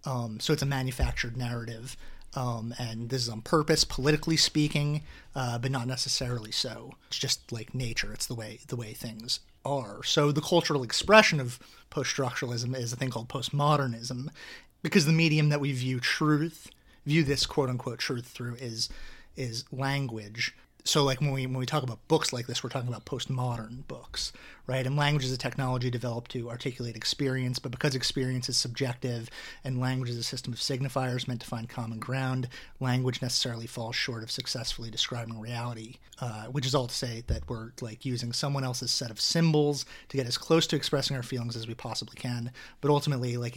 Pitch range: 120-140 Hz